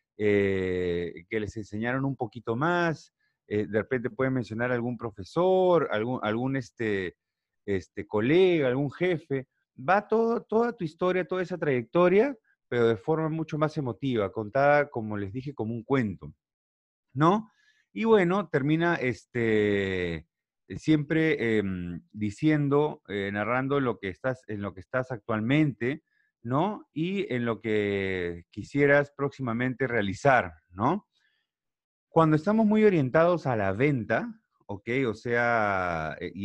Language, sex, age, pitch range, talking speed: Spanish, male, 30-49, 105-150 Hz, 135 wpm